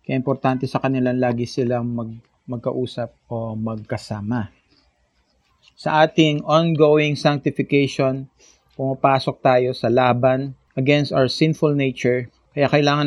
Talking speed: 110 wpm